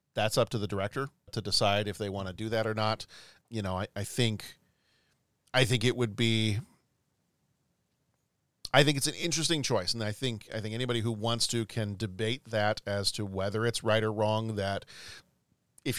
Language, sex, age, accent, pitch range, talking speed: English, male, 40-59, American, 105-125 Hz, 195 wpm